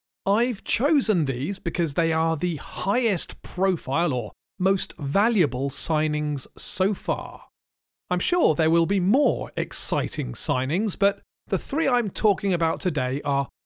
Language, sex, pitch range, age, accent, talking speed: English, male, 150-225 Hz, 40-59, British, 135 wpm